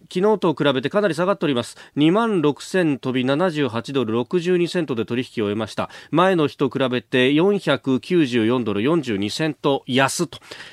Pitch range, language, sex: 130-200 Hz, Japanese, male